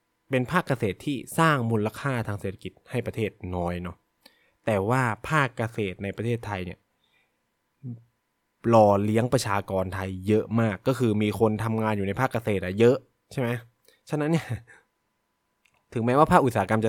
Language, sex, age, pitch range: Thai, male, 20-39, 95-120 Hz